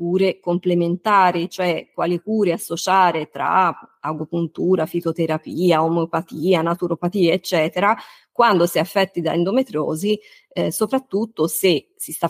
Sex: female